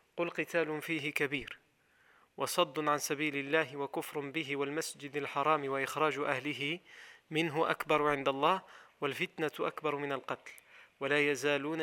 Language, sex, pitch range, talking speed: French, male, 145-170 Hz, 115 wpm